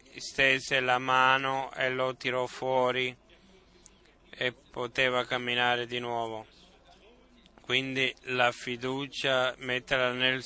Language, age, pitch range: Italian, 20-39, 130-135 Hz